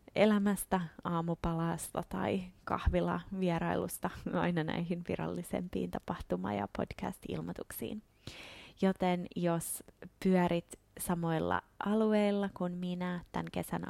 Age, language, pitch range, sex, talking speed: 20-39, Finnish, 165-200 Hz, female, 85 wpm